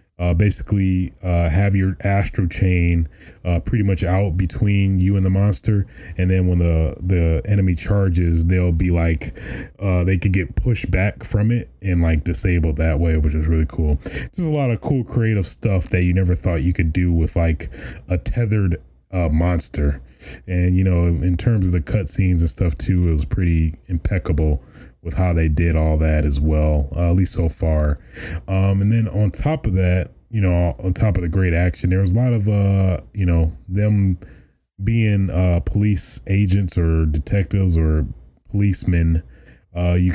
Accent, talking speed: American, 185 wpm